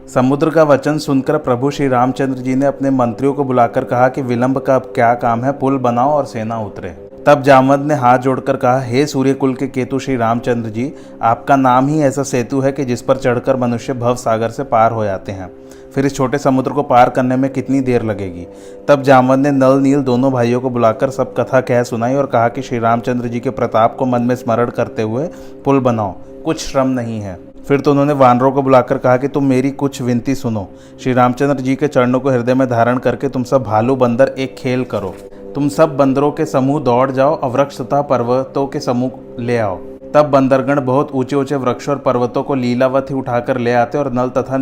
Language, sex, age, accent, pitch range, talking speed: Hindi, male, 30-49, native, 120-140 Hz, 210 wpm